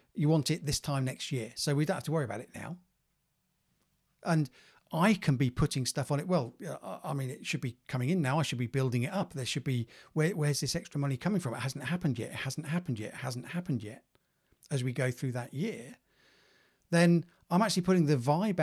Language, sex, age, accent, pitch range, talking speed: English, male, 40-59, British, 130-170 Hz, 230 wpm